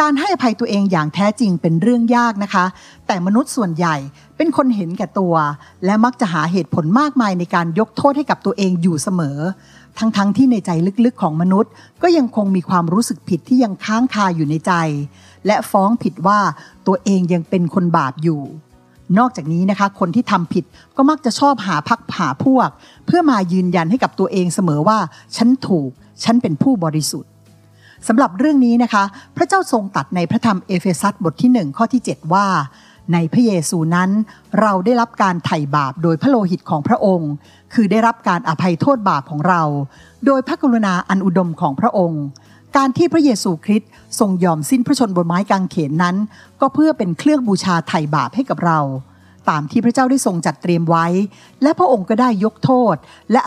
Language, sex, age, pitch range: Thai, female, 60-79, 170-235 Hz